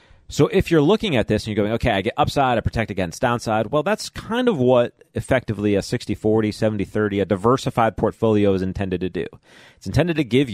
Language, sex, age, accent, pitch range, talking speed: English, male, 30-49, American, 90-120 Hz, 210 wpm